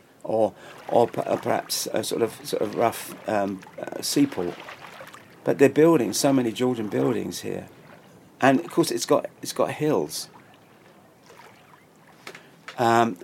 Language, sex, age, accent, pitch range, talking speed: English, male, 50-69, British, 105-125 Hz, 130 wpm